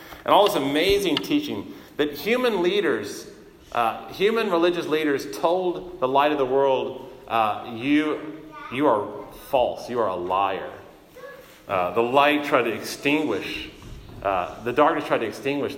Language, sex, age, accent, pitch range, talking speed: English, male, 40-59, American, 130-180 Hz, 150 wpm